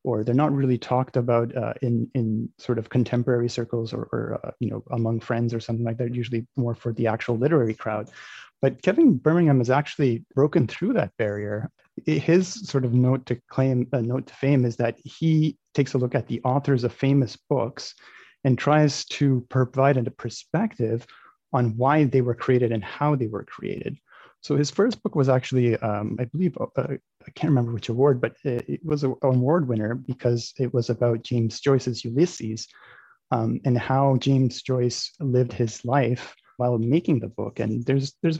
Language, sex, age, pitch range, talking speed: English, male, 30-49, 115-140 Hz, 190 wpm